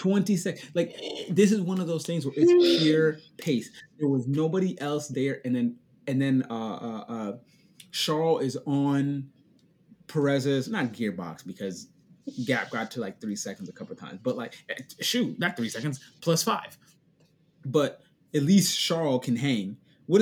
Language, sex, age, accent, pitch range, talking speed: English, male, 30-49, American, 135-185 Hz, 170 wpm